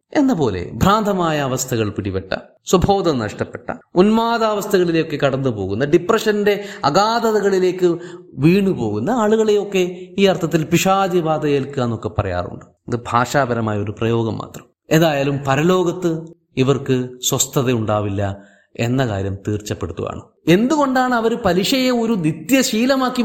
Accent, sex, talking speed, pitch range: native, male, 85 wpm, 145-230 Hz